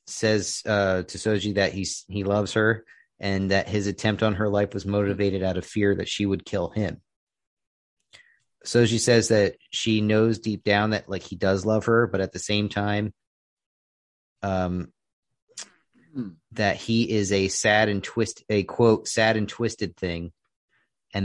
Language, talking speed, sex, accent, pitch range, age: English, 170 wpm, male, American, 95-110 Hz, 30-49